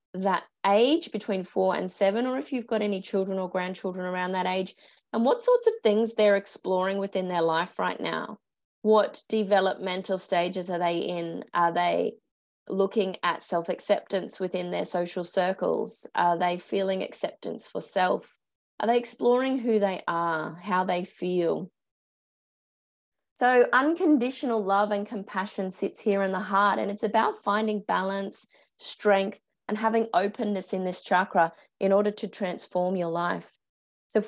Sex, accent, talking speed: female, Australian, 155 wpm